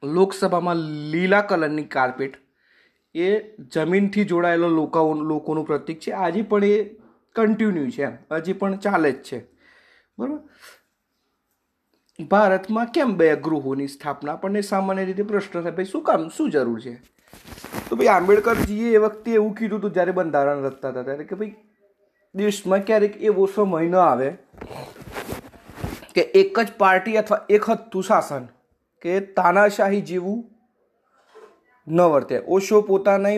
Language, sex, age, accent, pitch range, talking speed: Gujarati, male, 30-49, native, 160-210 Hz, 115 wpm